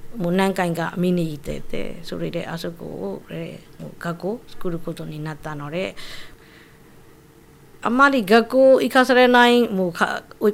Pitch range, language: 165-225 Hz, Japanese